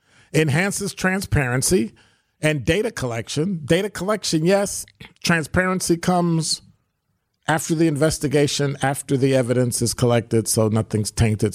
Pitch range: 110-155 Hz